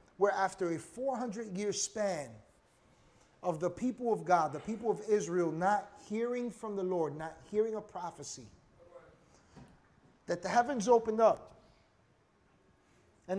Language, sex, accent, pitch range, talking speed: English, male, American, 180-230 Hz, 130 wpm